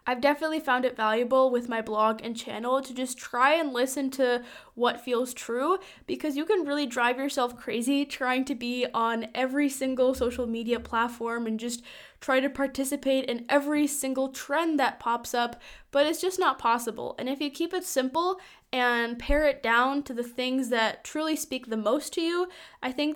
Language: English